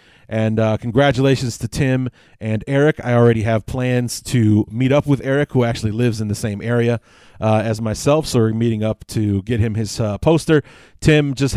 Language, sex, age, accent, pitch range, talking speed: English, male, 30-49, American, 110-140 Hz, 195 wpm